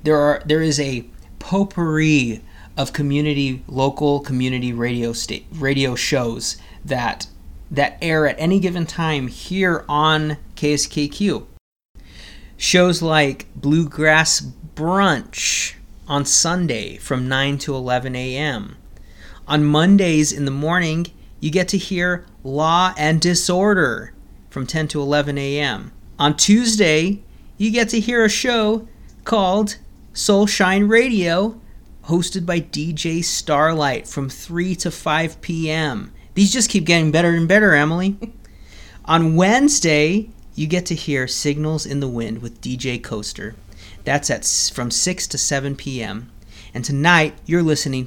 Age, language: 30-49, English